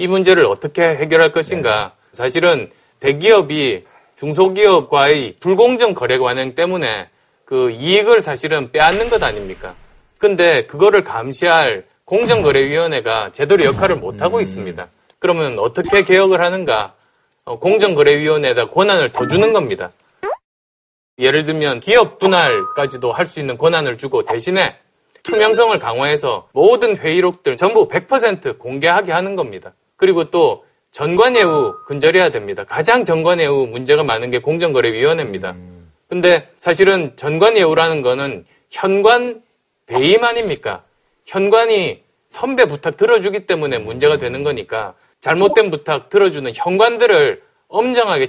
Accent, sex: native, male